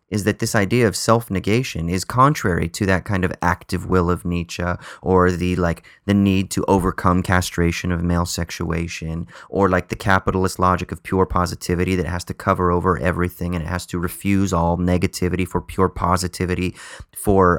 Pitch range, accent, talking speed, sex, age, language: 85-100 Hz, American, 175 wpm, male, 30-49, English